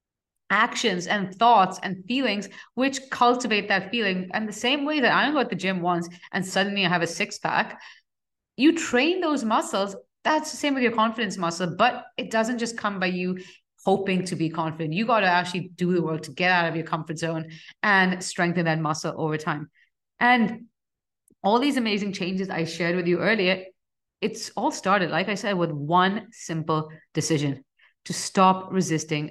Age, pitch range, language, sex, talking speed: 30-49, 170-205 Hz, English, female, 190 wpm